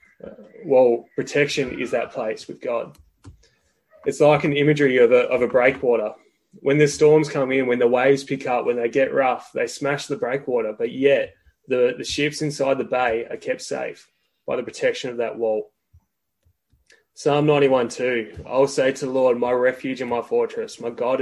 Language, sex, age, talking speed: English, male, 20-39, 190 wpm